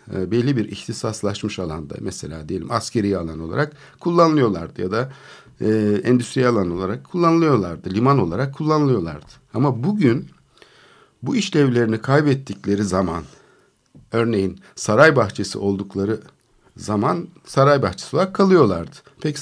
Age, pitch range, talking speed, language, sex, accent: 60-79, 100-145 Hz, 110 wpm, Turkish, male, native